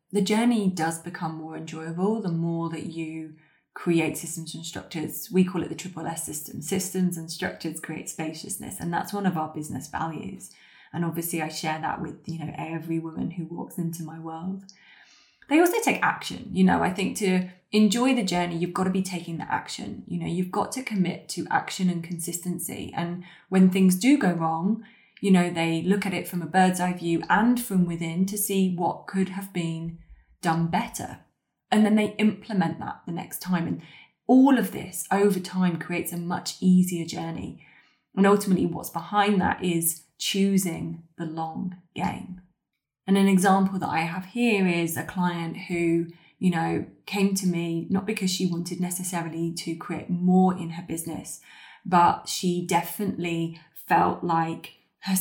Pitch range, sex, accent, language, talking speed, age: 165-195 Hz, female, British, English, 180 wpm, 20-39